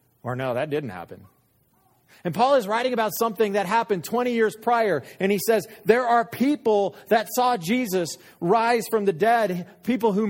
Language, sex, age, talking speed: English, male, 40-59, 180 wpm